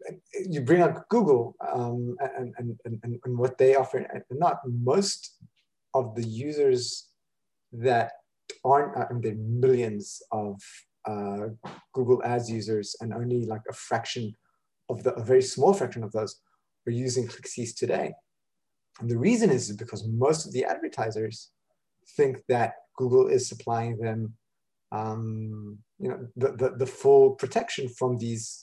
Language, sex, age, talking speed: English, male, 30-49, 150 wpm